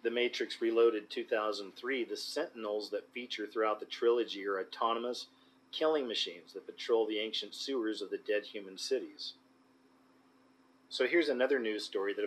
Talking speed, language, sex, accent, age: 150 wpm, English, male, American, 40-59